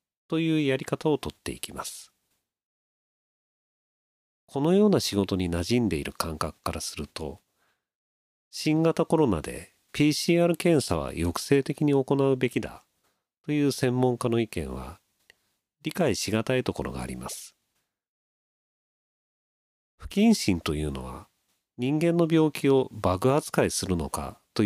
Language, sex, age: Japanese, male, 40-59